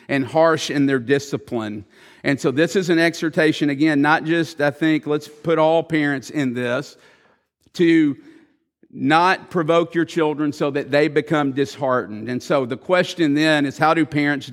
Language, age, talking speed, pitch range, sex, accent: English, 50-69, 170 wpm, 140-165 Hz, male, American